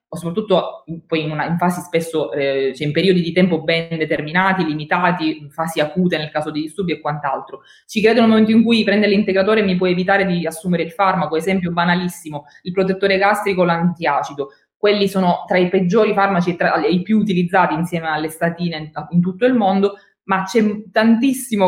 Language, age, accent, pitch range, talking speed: Italian, 20-39, native, 165-200 Hz, 195 wpm